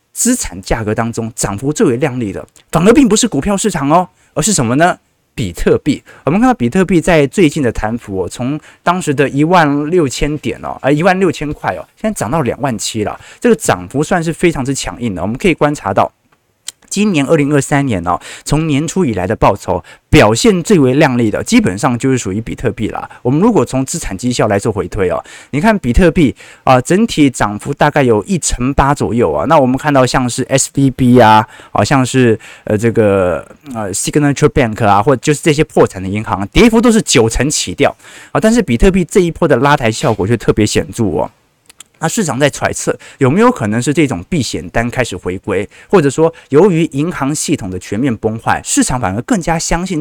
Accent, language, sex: native, Chinese, male